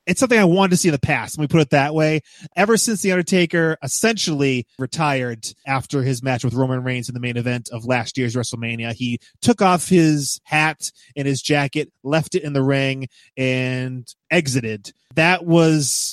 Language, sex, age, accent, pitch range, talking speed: English, male, 20-39, American, 135-175 Hz, 195 wpm